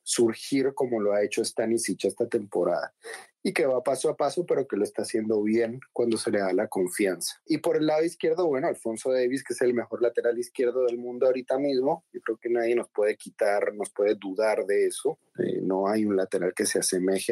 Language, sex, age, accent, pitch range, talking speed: Spanish, male, 30-49, Mexican, 115-145 Hz, 220 wpm